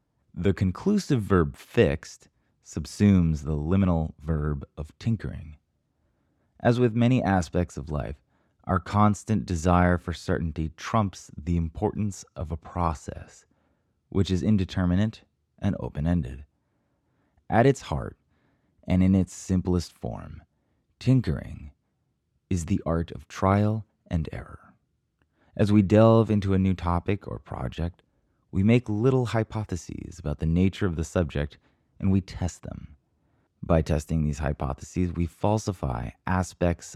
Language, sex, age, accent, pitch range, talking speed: English, male, 30-49, American, 80-105 Hz, 125 wpm